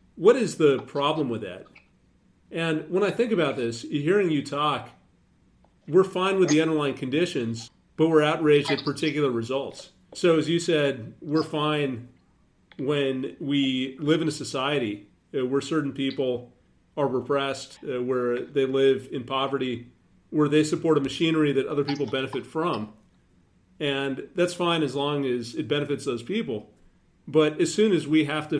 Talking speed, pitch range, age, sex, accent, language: 160 wpm, 130-155 Hz, 40-59, male, American, English